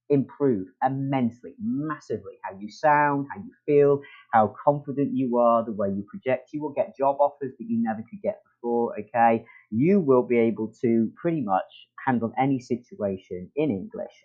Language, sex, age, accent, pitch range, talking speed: English, male, 40-59, British, 115-155 Hz, 175 wpm